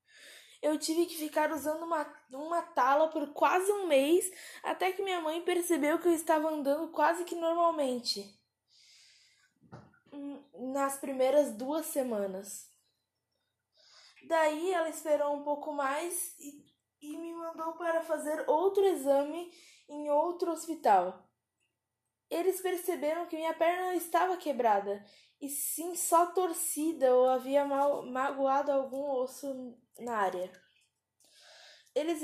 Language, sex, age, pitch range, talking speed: Portuguese, female, 10-29, 270-335 Hz, 120 wpm